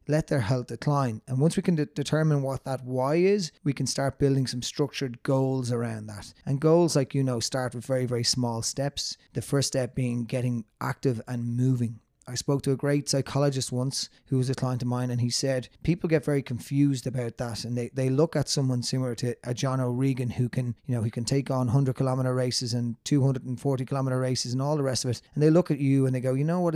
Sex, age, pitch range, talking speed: male, 30-49, 125-145 Hz, 240 wpm